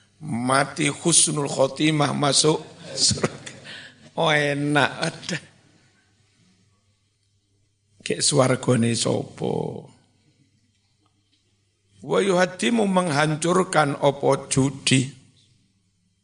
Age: 60-79